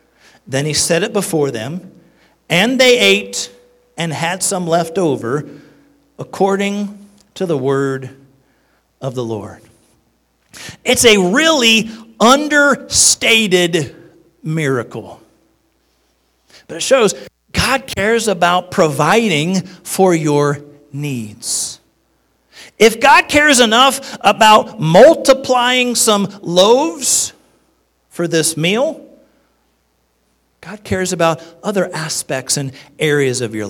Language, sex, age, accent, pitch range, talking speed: English, male, 50-69, American, 140-215 Hz, 100 wpm